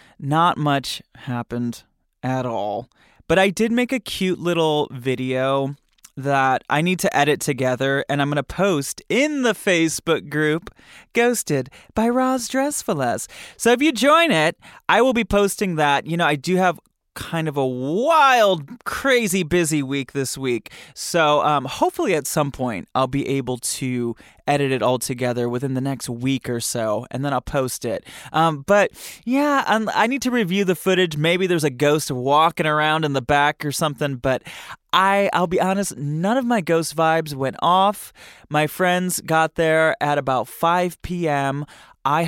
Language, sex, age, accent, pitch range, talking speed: English, male, 20-39, American, 135-180 Hz, 170 wpm